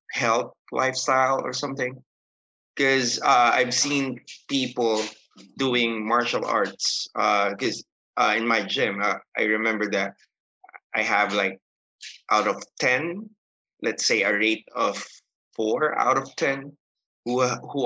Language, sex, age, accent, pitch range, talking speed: English, male, 20-39, Filipino, 110-140 Hz, 130 wpm